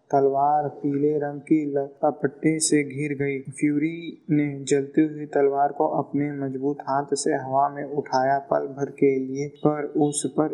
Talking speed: 155 wpm